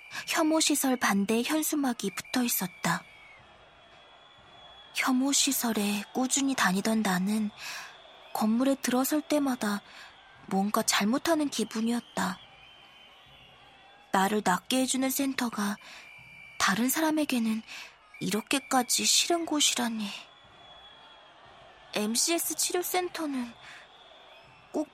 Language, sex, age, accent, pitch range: Korean, female, 20-39, native, 210-270 Hz